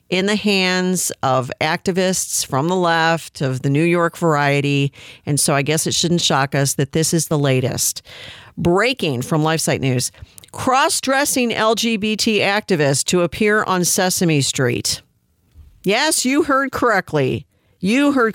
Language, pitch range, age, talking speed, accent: English, 145-180 Hz, 50-69, 145 wpm, American